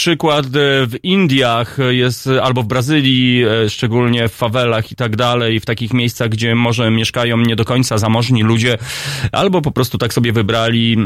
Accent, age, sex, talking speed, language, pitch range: native, 30-49, male, 165 wpm, Polish, 120-150 Hz